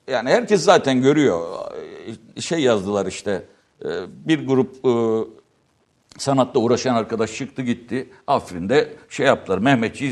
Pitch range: 120-200 Hz